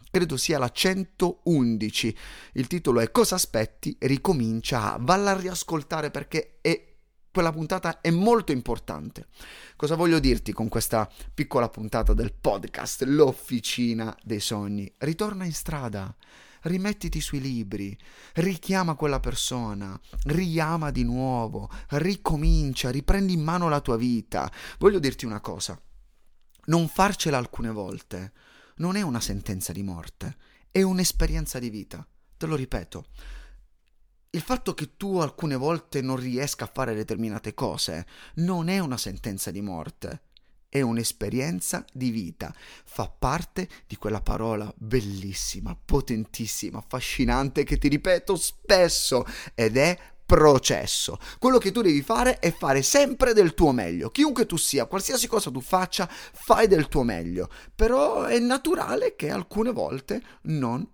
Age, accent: 30-49, native